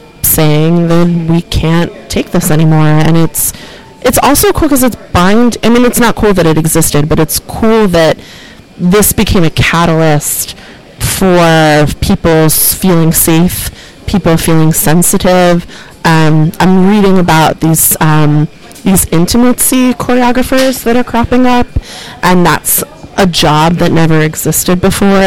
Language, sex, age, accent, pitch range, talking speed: English, female, 30-49, American, 155-190 Hz, 140 wpm